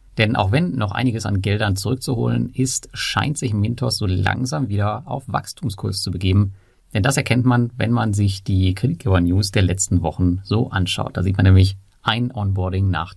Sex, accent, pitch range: male, German, 95-125 Hz